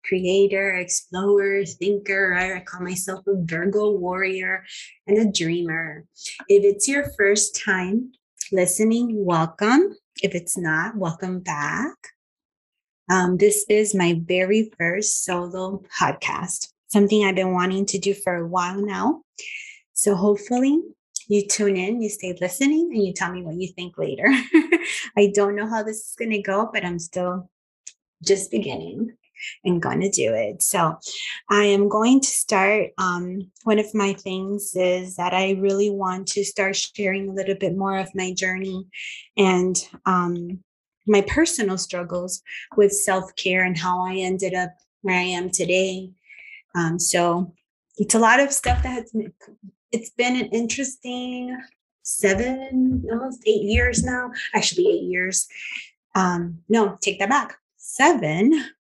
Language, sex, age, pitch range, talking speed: English, female, 20-39, 185-220 Hz, 150 wpm